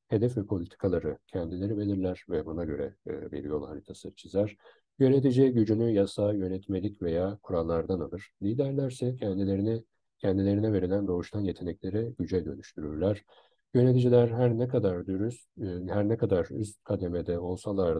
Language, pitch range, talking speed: Turkish, 90-110 Hz, 130 wpm